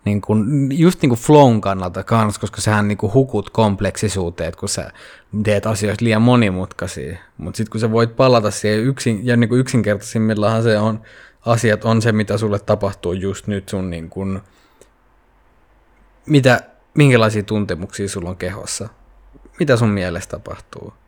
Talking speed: 155 wpm